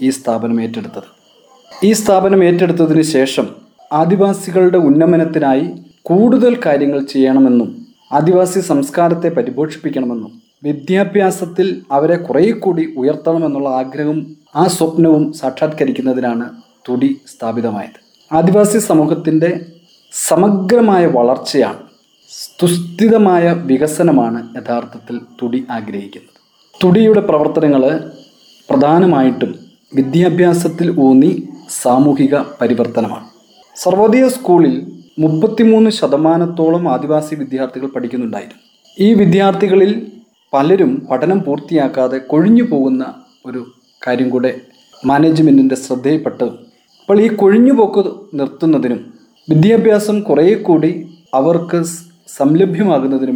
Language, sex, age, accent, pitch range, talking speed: Malayalam, male, 30-49, native, 135-190 Hz, 75 wpm